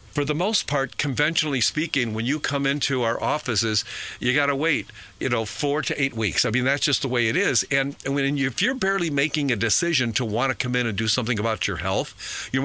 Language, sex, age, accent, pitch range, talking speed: English, male, 50-69, American, 115-150 Hz, 245 wpm